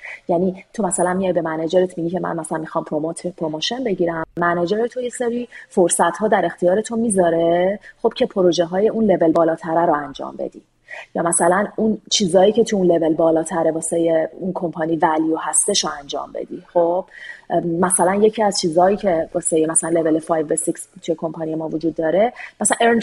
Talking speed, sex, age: 180 wpm, female, 30-49